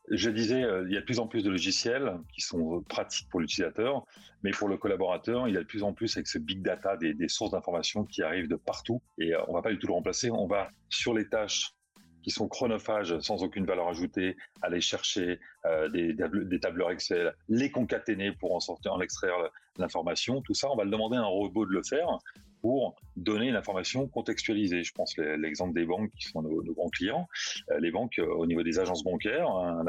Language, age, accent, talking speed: French, 30-49, French, 220 wpm